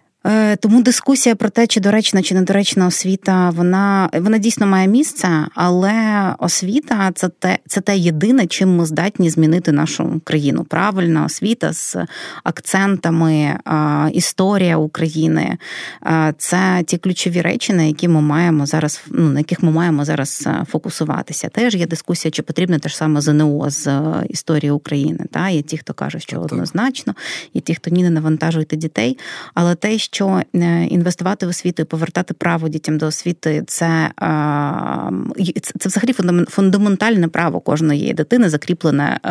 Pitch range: 160-200 Hz